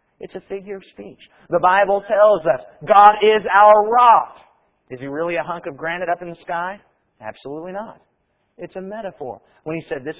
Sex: male